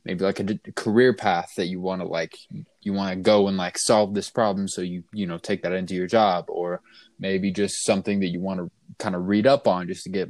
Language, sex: English, male